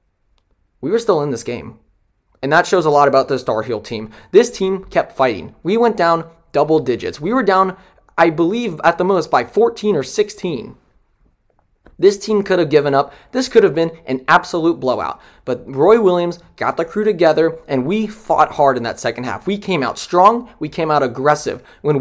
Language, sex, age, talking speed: English, male, 20-39, 200 wpm